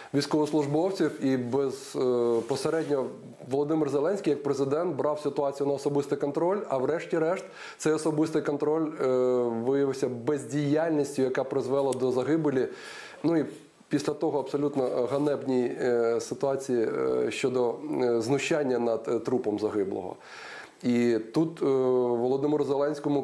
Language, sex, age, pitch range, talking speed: Ukrainian, male, 20-39, 130-150 Hz, 105 wpm